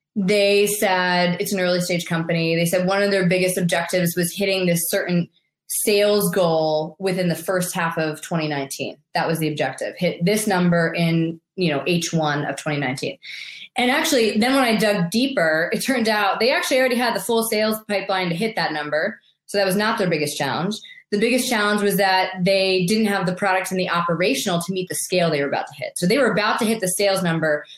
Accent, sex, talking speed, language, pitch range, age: American, female, 215 wpm, English, 170-210 Hz, 20-39